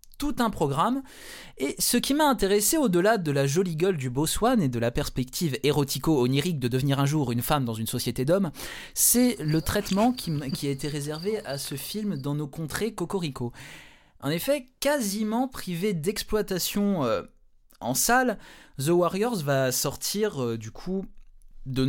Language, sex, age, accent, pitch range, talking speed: French, male, 20-39, French, 140-220 Hz, 165 wpm